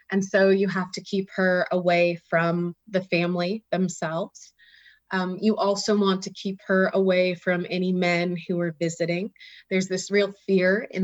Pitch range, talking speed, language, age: 175-195 Hz, 170 wpm, English, 20-39